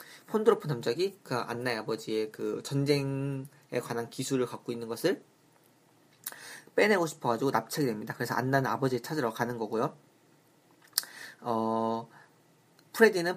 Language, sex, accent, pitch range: Korean, male, native, 120-170 Hz